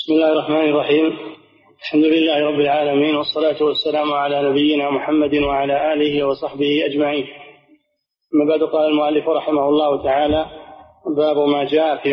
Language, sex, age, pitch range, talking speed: Arabic, male, 30-49, 140-190 Hz, 135 wpm